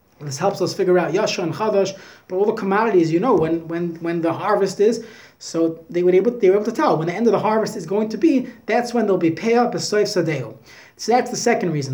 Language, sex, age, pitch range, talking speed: English, male, 30-49, 180-240 Hz, 250 wpm